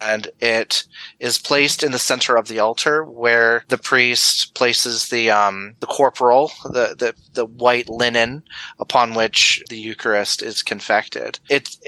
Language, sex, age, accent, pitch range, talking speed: English, male, 30-49, American, 115-140 Hz, 150 wpm